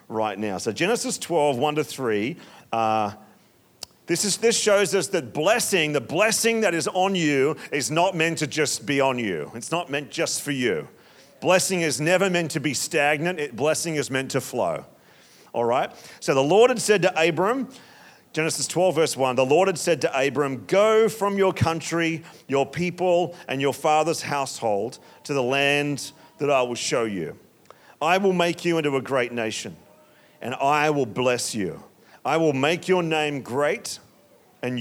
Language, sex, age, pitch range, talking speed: English, male, 40-59, 140-185 Hz, 180 wpm